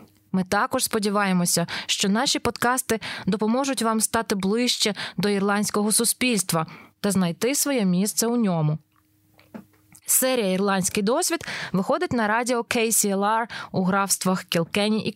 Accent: native